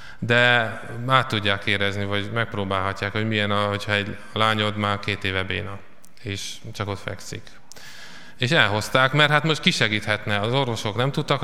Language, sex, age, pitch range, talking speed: Hungarian, male, 20-39, 100-130 Hz, 155 wpm